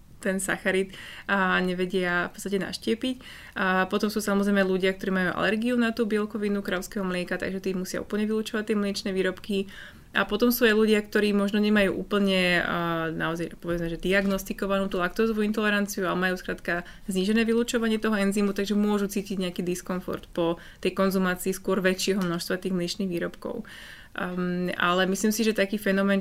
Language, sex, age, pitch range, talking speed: Slovak, female, 20-39, 180-200 Hz, 165 wpm